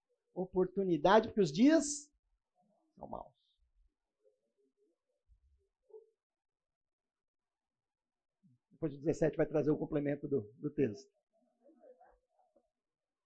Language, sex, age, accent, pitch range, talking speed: Portuguese, male, 50-69, Brazilian, 160-260 Hz, 70 wpm